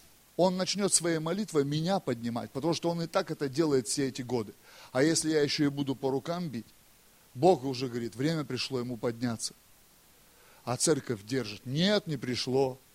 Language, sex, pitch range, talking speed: Russian, male, 125-165 Hz, 175 wpm